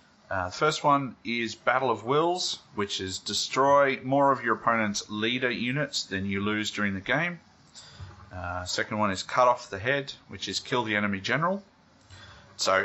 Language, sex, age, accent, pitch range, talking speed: English, male, 30-49, Australian, 95-130 Hz, 180 wpm